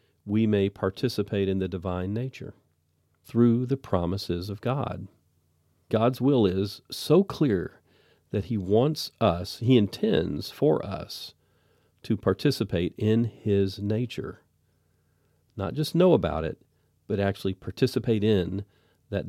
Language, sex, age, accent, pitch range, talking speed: English, male, 40-59, American, 90-115 Hz, 125 wpm